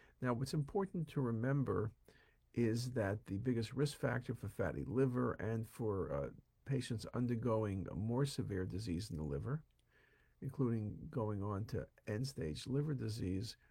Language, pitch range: English, 100-125 Hz